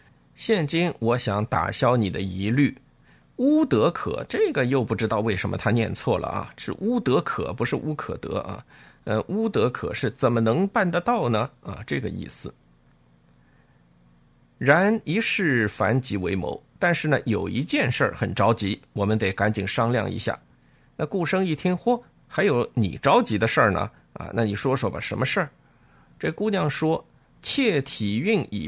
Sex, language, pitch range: male, Chinese, 105-155 Hz